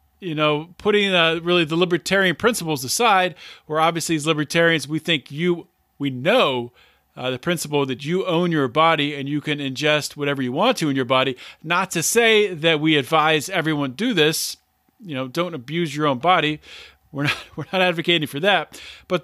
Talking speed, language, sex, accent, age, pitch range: 190 wpm, English, male, American, 40-59, 150-200 Hz